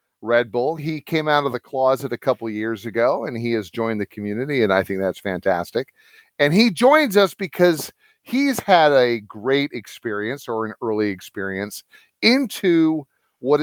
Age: 40-59